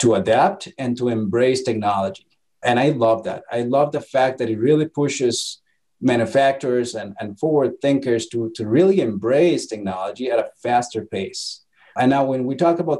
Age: 30-49